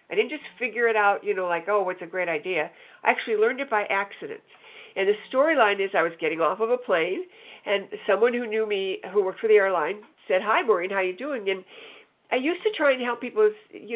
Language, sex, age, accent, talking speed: English, female, 50-69, American, 250 wpm